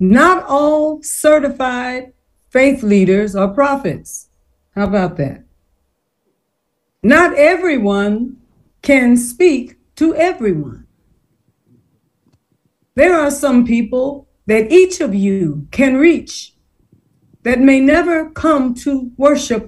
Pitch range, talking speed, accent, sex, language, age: 215-295 Hz, 100 wpm, American, female, English, 60-79